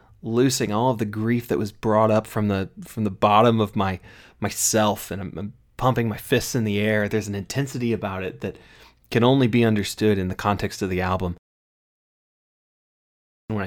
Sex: male